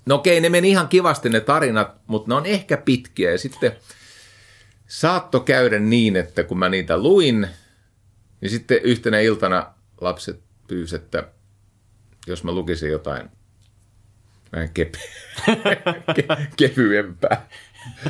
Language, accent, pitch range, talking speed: Finnish, native, 100-125 Hz, 125 wpm